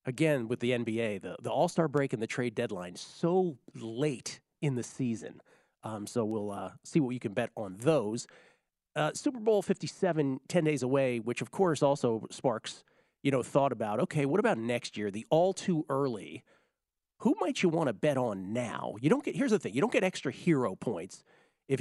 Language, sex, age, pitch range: English, male, 40-59, 120-155 Hz